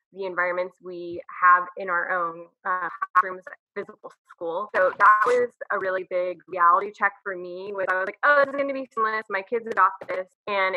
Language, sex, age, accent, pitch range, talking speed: English, female, 20-39, American, 180-215 Hz, 205 wpm